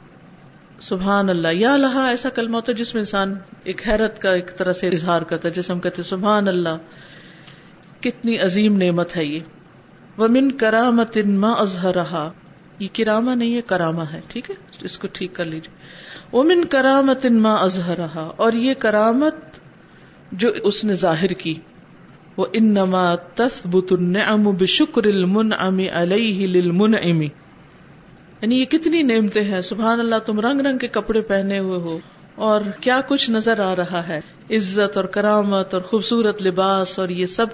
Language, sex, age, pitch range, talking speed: Urdu, female, 50-69, 185-245 Hz, 160 wpm